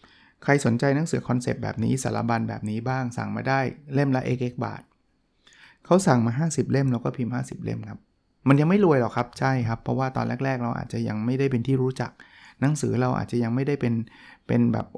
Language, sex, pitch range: Thai, male, 115-145 Hz